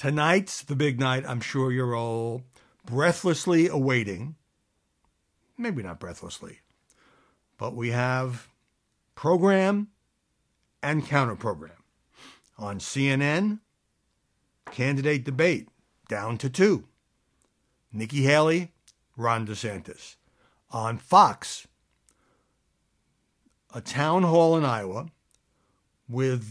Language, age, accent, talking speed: English, 60-79, American, 90 wpm